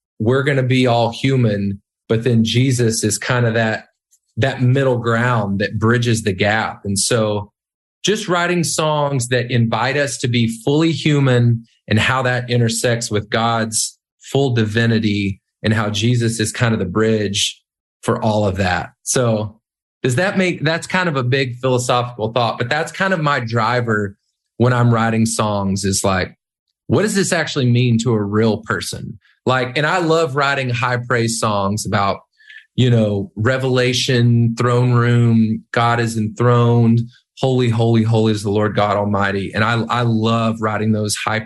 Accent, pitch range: American, 105-125 Hz